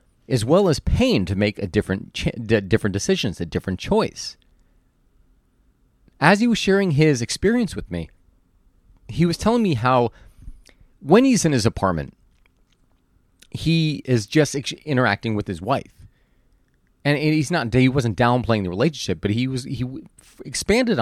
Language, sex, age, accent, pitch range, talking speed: English, male, 30-49, American, 100-155 Hz, 145 wpm